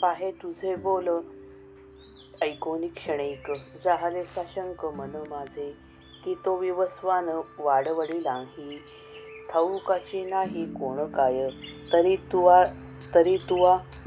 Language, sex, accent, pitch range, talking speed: Marathi, female, native, 145-190 Hz, 75 wpm